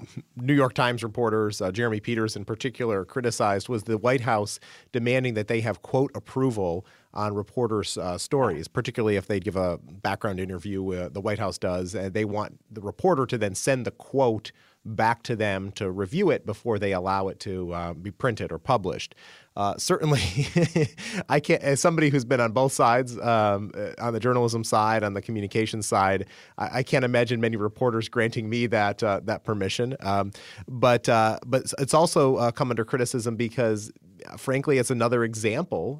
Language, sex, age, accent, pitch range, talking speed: English, male, 30-49, American, 100-125 Hz, 180 wpm